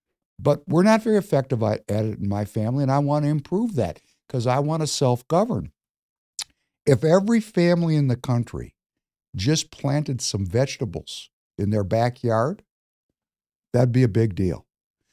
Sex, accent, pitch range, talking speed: male, American, 110-145 Hz, 160 wpm